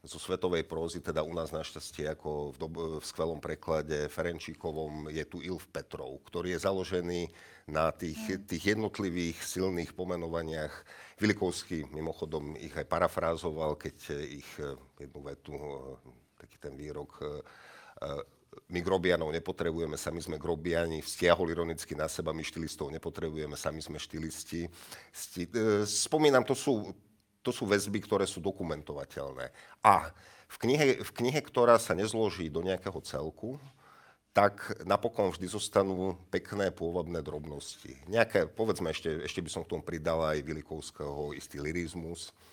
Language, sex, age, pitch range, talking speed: Slovak, male, 50-69, 80-95 Hz, 135 wpm